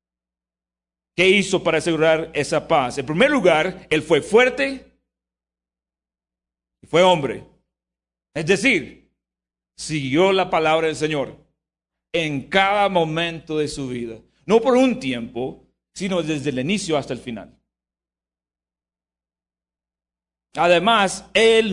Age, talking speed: 50-69, 115 wpm